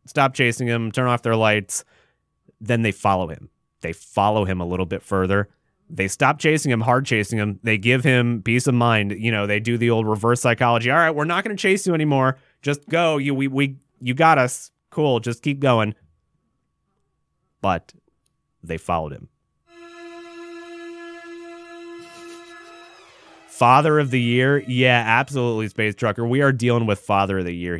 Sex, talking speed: male, 175 wpm